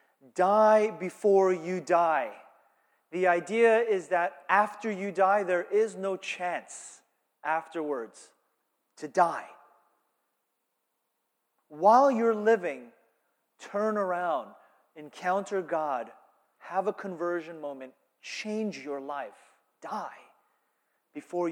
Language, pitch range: English, 145-190 Hz